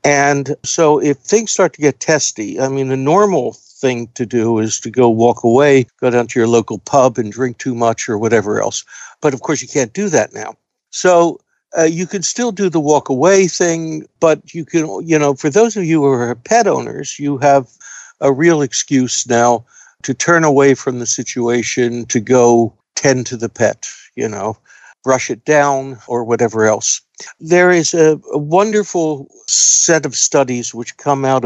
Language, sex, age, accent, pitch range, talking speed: English, male, 60-79, American, 120-155 Hz, 190 wpm